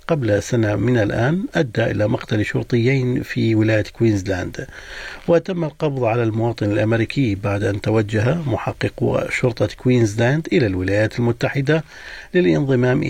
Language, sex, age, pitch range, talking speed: Arabic, male, 50-69, 120-200 Hz, 120 wpm